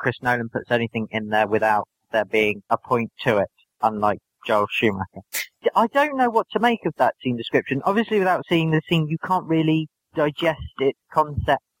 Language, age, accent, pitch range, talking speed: English, 30-49, British, 120-145 Hz, 190 wpm